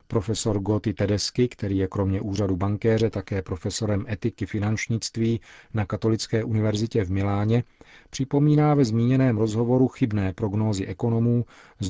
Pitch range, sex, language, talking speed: 100-115 Hz, male, Czech, 125 wpm